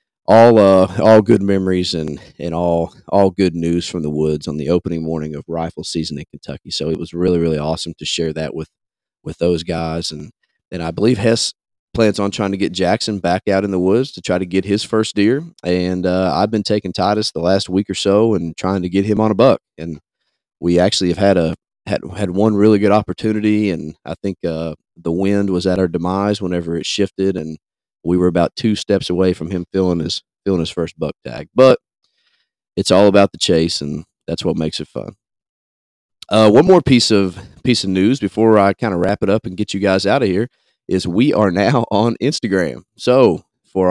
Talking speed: 220 wpm